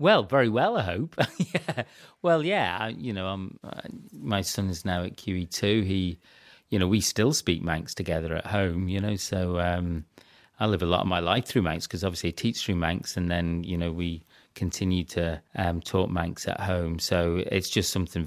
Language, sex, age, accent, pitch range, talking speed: English, male, 40-59, British, 85-100 Hz, 210 wpm